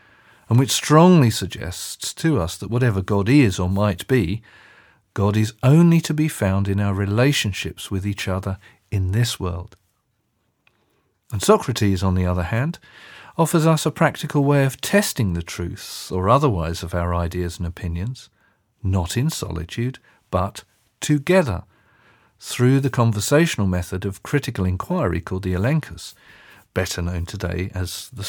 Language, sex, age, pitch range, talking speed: English, male, 40-59, 95-135 Hz, 150 wpm